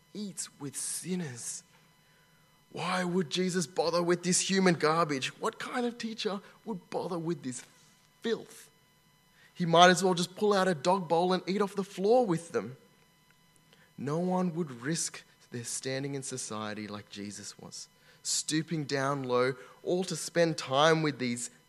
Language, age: English, 20-39